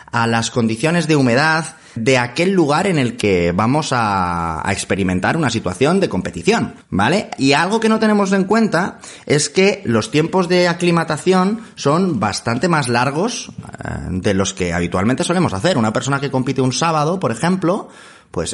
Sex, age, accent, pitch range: male, 30-49, Spanish, 110-160 Hz